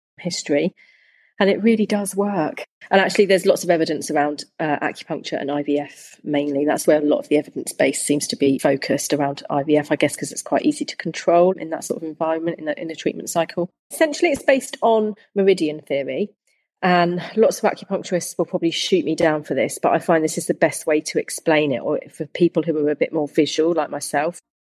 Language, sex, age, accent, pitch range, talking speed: English, female, 30-49, British, 150-180 Hz, 215 wpm